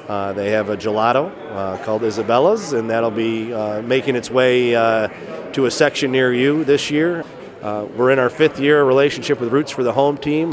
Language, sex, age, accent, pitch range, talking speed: English, male, 30-49, American, 115-140 Hz, 205 wpm